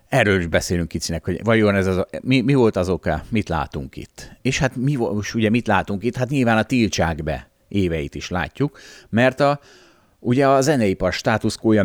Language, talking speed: Hungarian, 190 wpm